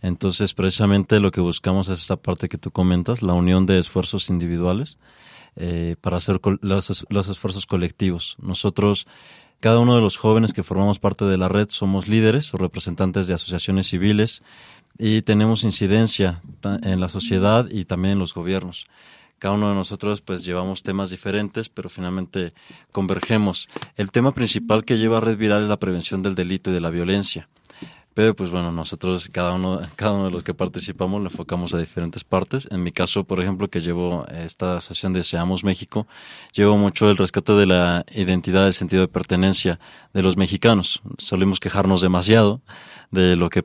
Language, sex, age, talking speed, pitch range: English, male, 30-49, 175 wpm, 90-105 Hz